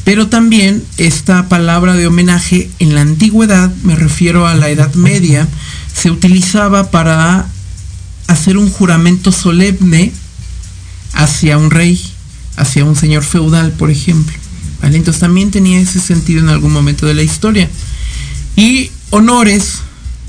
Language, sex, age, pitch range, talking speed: Spanish, male, 50-69, 140-185 Hz, 130 wpm